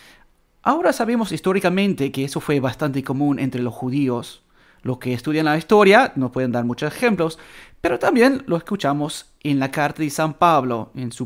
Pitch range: 135-200 Hz